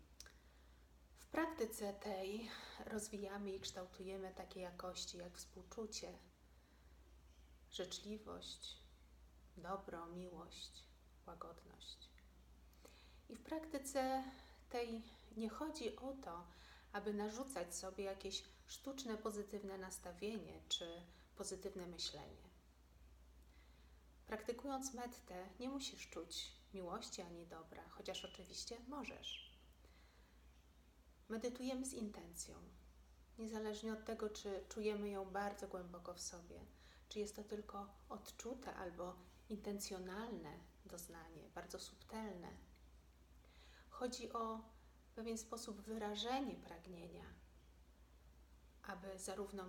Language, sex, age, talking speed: Polish, female, 30-49, 90 wpm